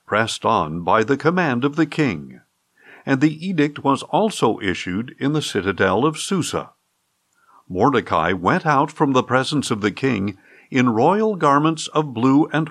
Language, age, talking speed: English, 50-69, 160 wpm